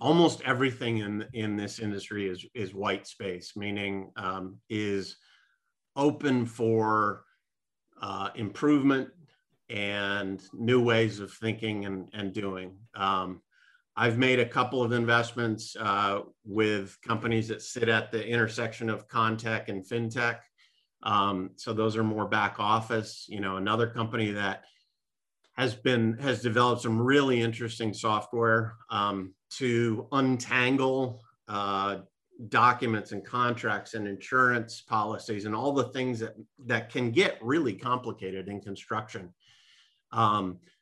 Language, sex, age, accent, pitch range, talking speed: English, male, 50-69, American, 105-125 Hz, 130 wpm